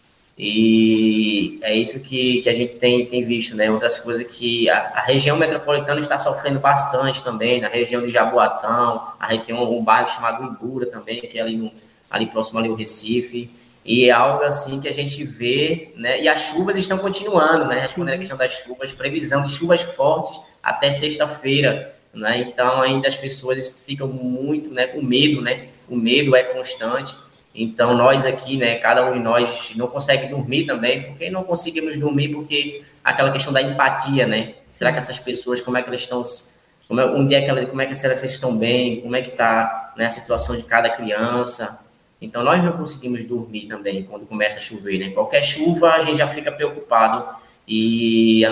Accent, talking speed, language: Brazilian, 195 wpm, Portuguese